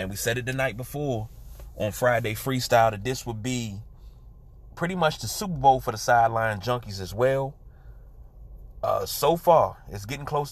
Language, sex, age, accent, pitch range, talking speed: English, male, 30-49, American, 110-130 Hz, 175 wpm